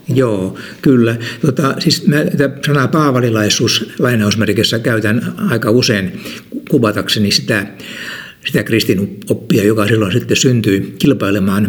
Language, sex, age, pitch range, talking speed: Finnish, male, 60-79, 105-145 Hz, 105 wpm